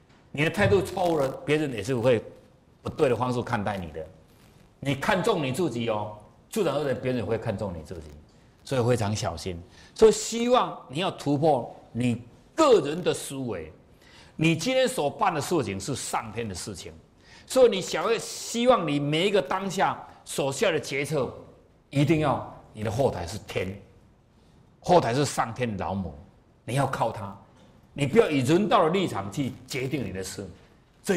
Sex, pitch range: male, 105-165 Hz